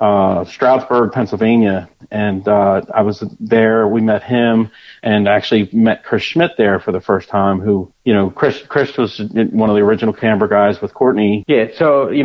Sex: male